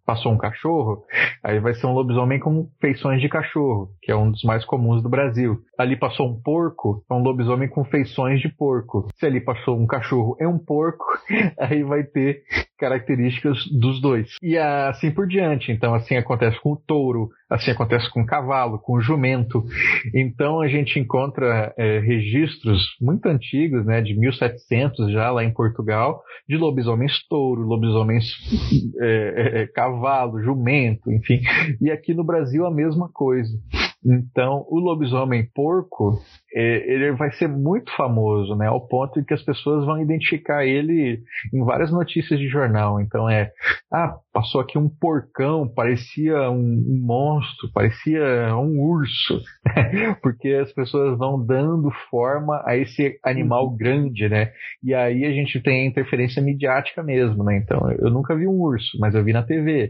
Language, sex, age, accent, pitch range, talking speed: Portuguese, male, 30-49, Brazilian, 115-145 Hz, 165 wpm